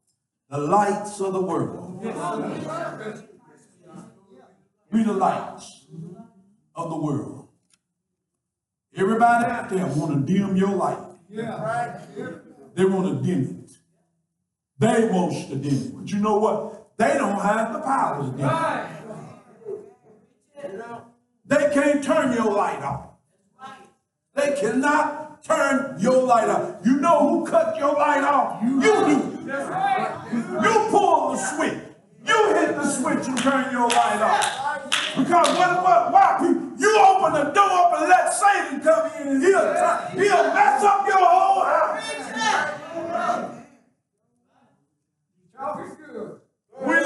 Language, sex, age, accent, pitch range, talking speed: English, male, 50-69, American, 215-335 Hz, 130 wpm